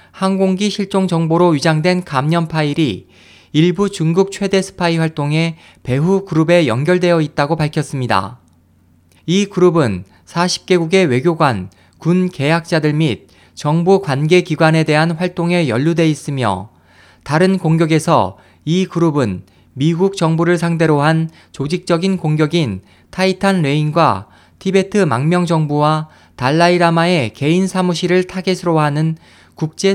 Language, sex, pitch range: Korean, male, 130-180 Hz